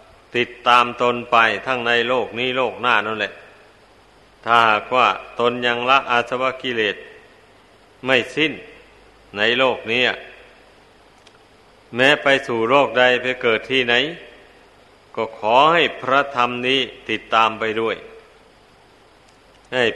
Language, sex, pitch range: Thai, male, 120-135 Hz